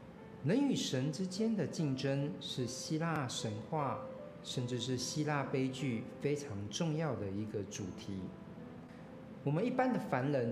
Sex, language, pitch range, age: male, Chinese, 110-150 Hz, 50-69